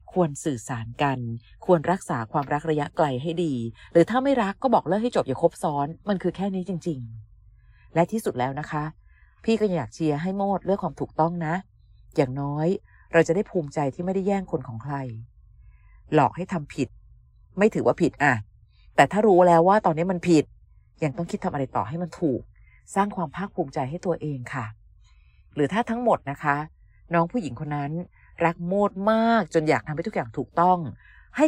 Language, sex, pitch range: Thai, female, 130-180 Hz